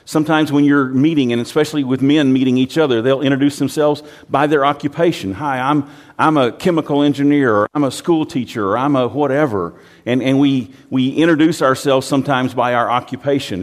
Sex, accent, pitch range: male, American, 115-145 Hz